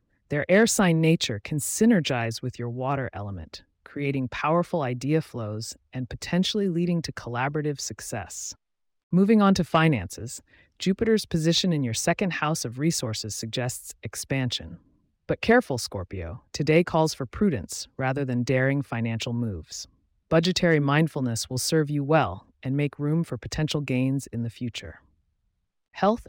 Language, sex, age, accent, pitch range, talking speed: English, female, 30-49, American, 115-165 Hz, 140 wpm